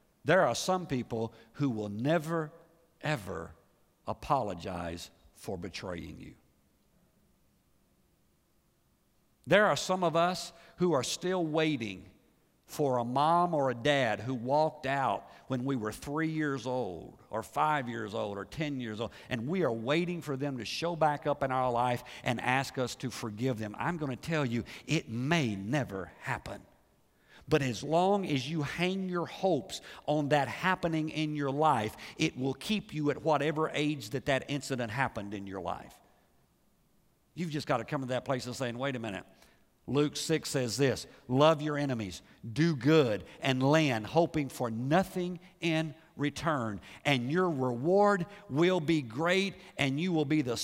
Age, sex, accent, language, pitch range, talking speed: 50-69, male, American, English, 120-160 Hz, 165 wpm